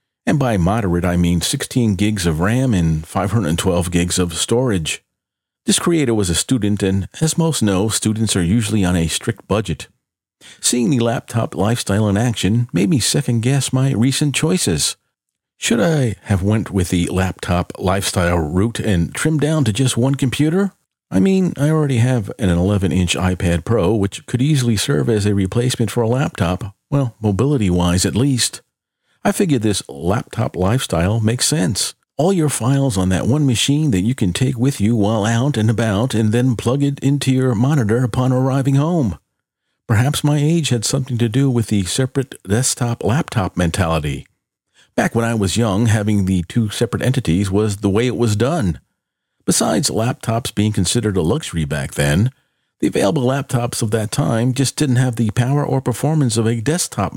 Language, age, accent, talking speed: English, 50-69, American, 175 wpm